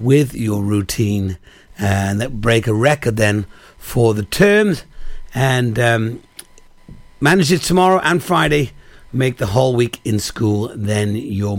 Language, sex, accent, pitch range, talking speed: English, male, British, 110-155 Hz, 140 wpm